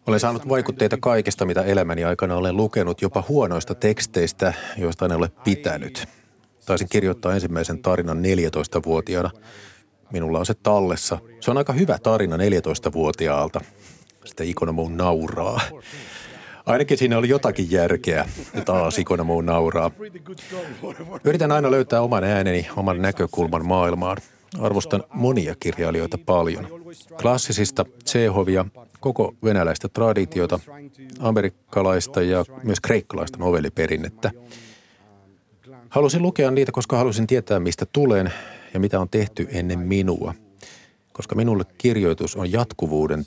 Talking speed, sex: 115 wpm, male